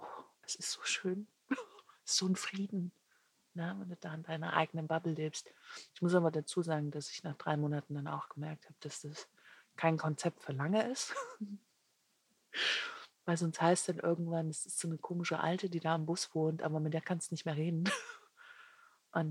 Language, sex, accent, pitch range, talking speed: German, female, German, 150-170 Hz, 200 wpm